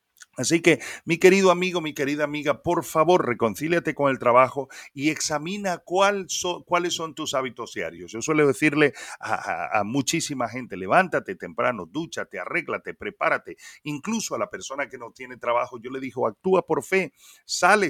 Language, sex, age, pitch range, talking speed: Spanish, male, 40-59, 130-175 Hz, 170 wpm